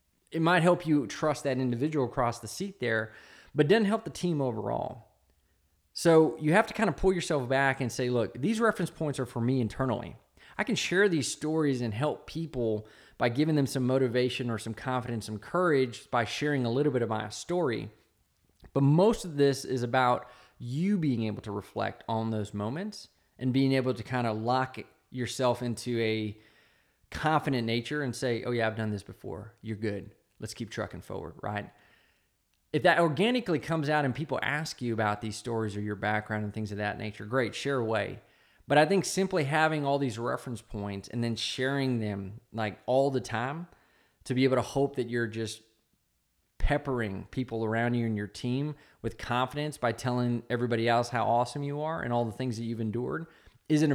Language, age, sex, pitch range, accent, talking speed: English, 20-39, male, 110-145 Hz, American, 195 wpm